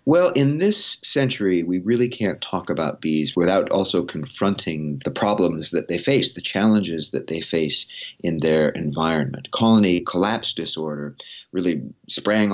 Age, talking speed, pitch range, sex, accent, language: 30-49, 150 wpm, 80-105 Hz, male, American, English